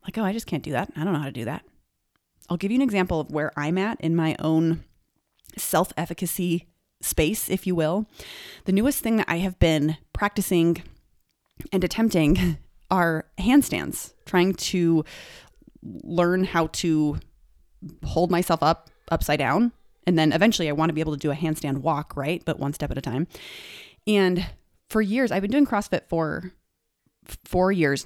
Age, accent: 30-49, American